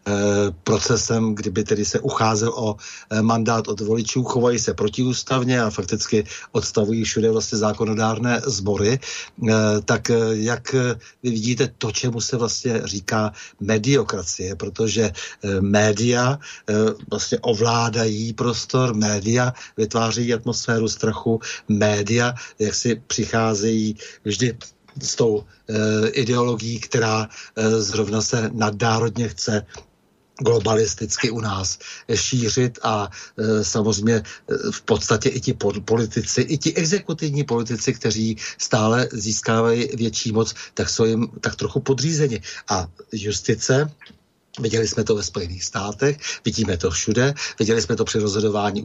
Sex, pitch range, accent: male, 105-120 Hz, native